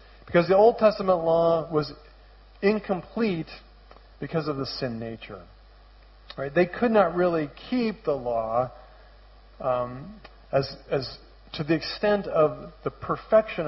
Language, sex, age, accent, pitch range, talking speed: English, male, 50-69, American, 130-170 Hz, 125 wpm